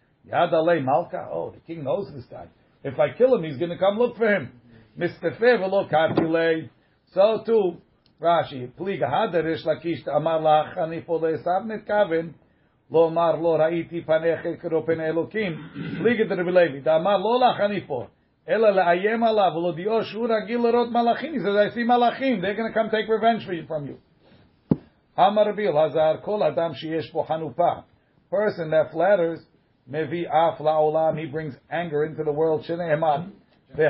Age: 50-69